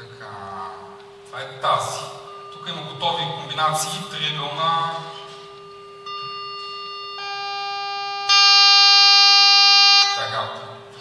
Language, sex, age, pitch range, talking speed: Bulgarian, male, 30-49, 135-205 Hz, 55 wpm